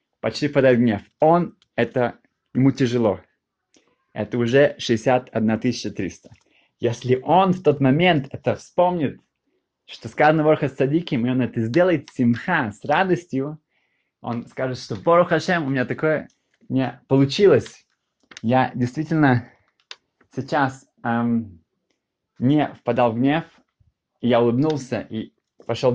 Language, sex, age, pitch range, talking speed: Russian, male, 20-39, 120-145 Hz, 115 wpm